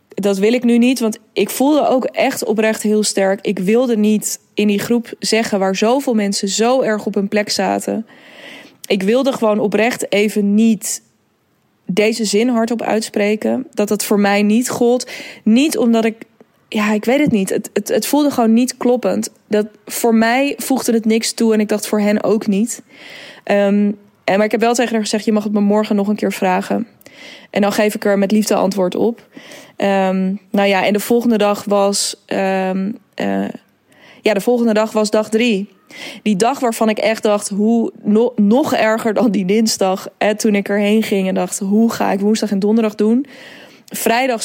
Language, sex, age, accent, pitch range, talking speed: Dutch, female, 20-39, Dutch, 205-230 Hz, 195 wpm